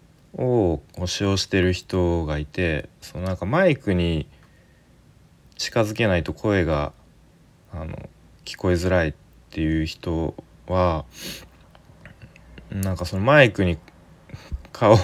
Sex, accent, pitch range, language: male, native, 85-110 Hz, Japanese